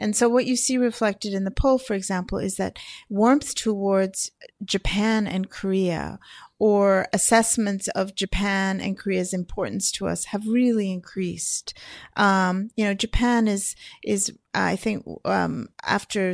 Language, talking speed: English, 145 wpm